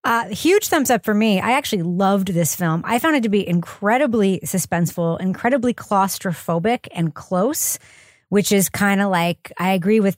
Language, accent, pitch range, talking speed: English, American, 170-215 Hz, 175 wpm